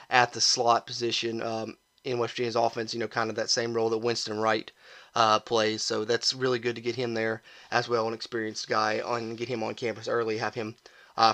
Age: 30-49